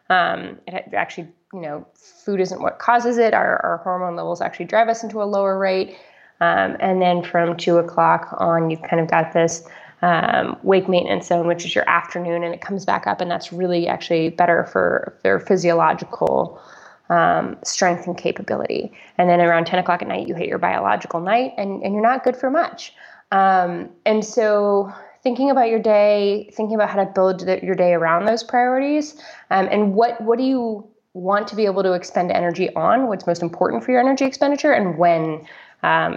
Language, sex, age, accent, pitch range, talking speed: English, female, 20-39, American, 170-215 Hz, 195 wpm